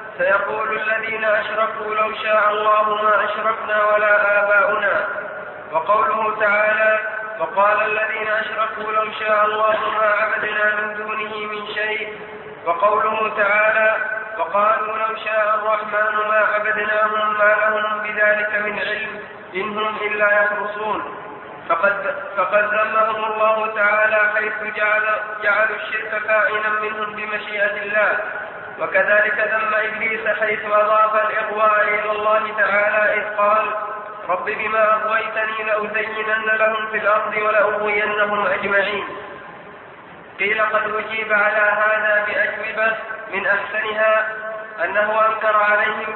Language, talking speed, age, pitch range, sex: Arabic, 105 wpm, 20-39, 210-215 Hz, male